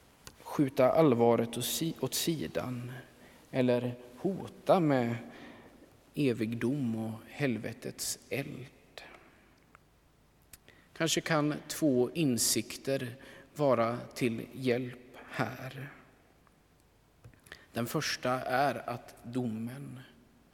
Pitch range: 120-145 Hz